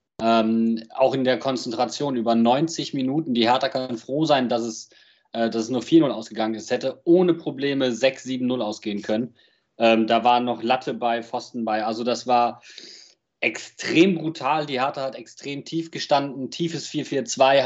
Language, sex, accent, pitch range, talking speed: German, male, German, 120-145 Hz, 165 wpm